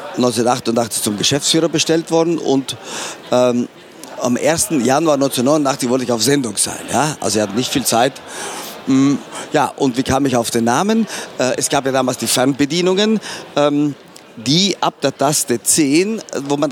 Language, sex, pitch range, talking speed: German, male, 125-155 Hz, 170 wpm